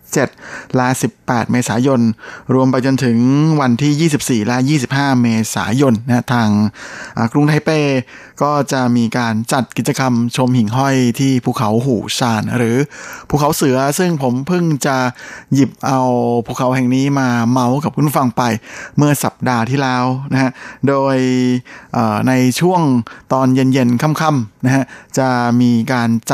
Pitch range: 120-140 Hz